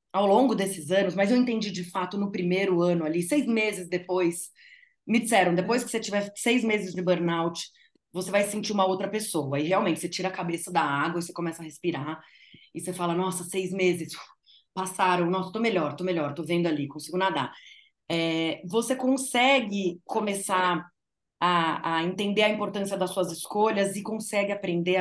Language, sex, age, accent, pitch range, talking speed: Portuguese, female, 20-39, Brazilian, 180-235 Hz, 185 wpm